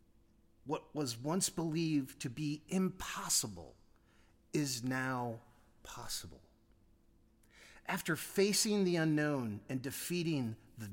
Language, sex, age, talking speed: English, male, 30-49, 95 wpm